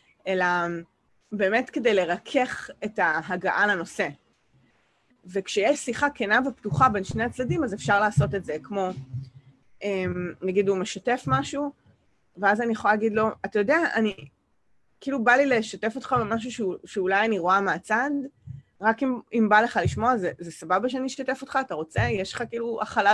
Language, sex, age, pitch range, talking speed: English, female, 20-39, 190-250 Hz, 155 wpm